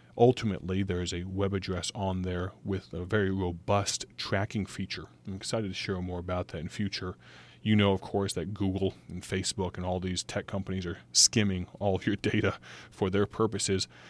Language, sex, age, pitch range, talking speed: English, male, 30-49, 90-105 Hz, 190 wpm